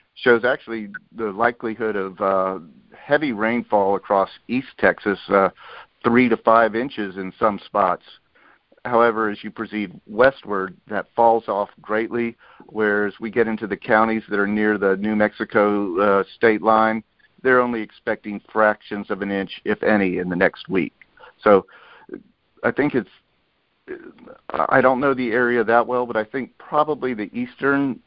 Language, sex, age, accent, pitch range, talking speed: English, male, 50-69, American, 105-120 Hz, 155 wpm